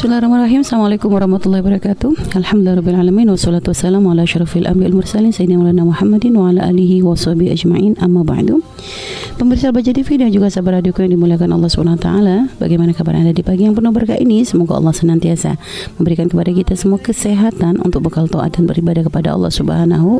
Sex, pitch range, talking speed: female, 160-200 Hz, 180 wpm